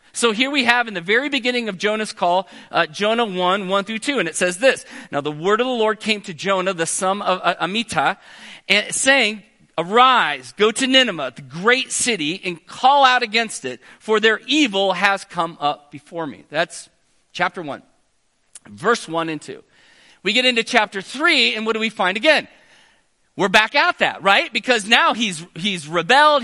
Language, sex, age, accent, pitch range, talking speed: English, male, 40-59, American, 175-245 Hz, 190 wpm